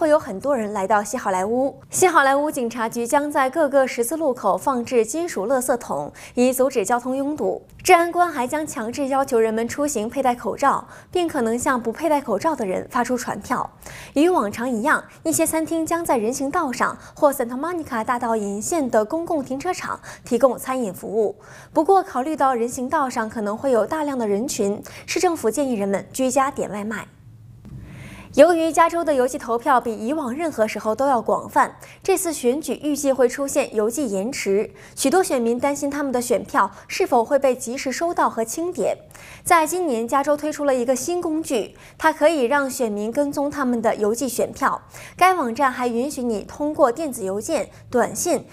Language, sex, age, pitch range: Chinese, female, 20-39, 230-305 Hz